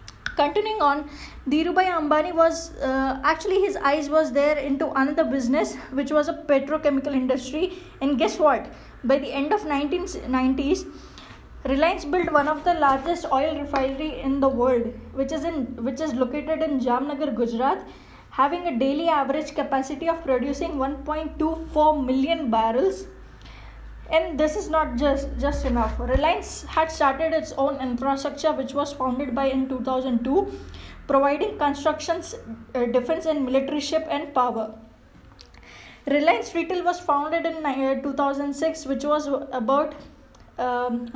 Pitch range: 265-310 Hz